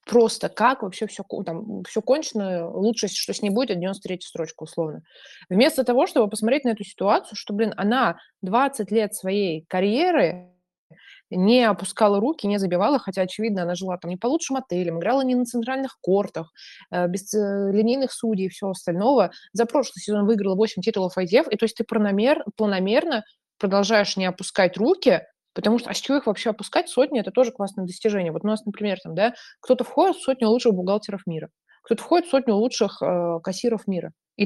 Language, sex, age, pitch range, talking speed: Russian, female, 20-39, 185-230 Hz, 185 wpm